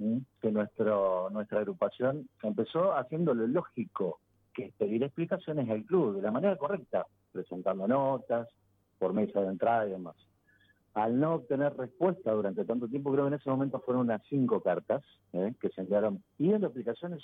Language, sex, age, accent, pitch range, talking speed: Spanish, male, 50-69, Argentinian, 100-135 Hz, 165 wpm